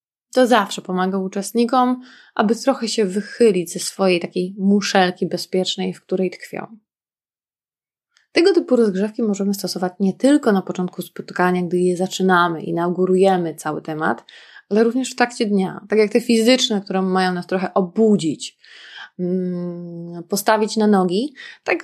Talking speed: 140 wpm